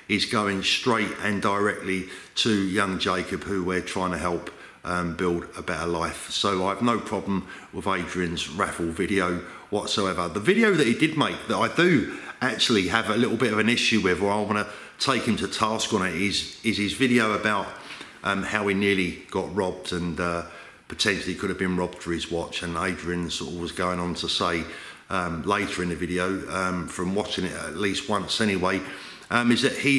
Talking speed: 200 wpm